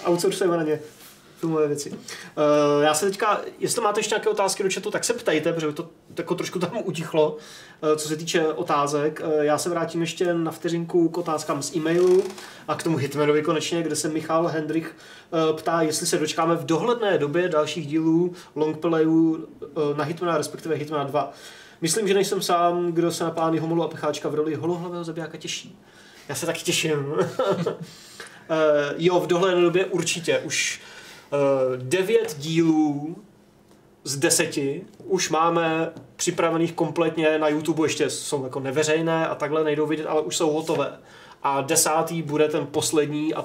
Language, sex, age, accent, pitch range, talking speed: Czech, male, 20-39, native, 150-170 Hz, 165 wpm